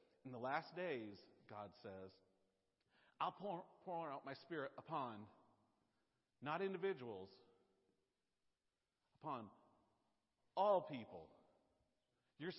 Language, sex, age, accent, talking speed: English, male, 50-69, American, 90 wpm